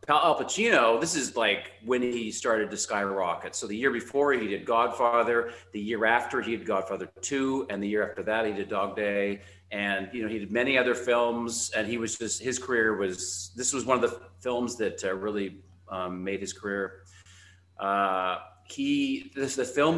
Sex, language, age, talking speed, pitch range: male, English, 40-59, 200 wpm, 95-125 Hz